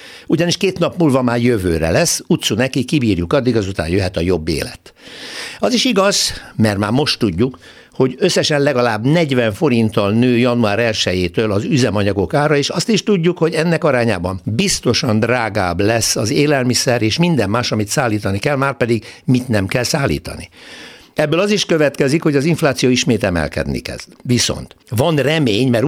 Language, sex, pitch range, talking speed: Hungarian, male, 105-145 Hz, 165 wpm